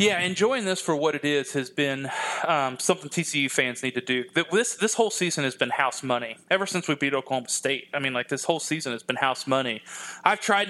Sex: male